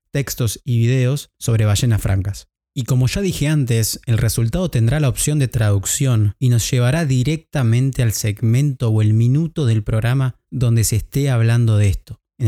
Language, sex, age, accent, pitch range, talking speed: Spanish, male, 20-39, Argentinian, 115-140 Hz, 175 wpm